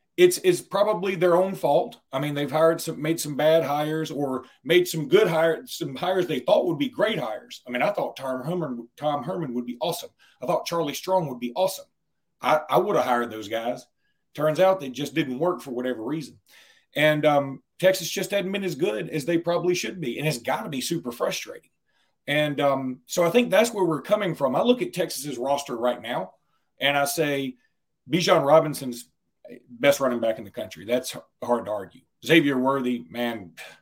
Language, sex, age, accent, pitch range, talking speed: English, male, 40-59, American, 125-170 Hz, 205 wpm